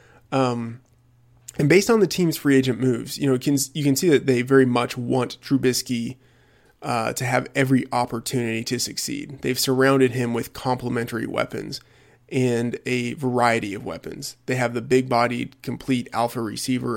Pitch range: 120-135 Hz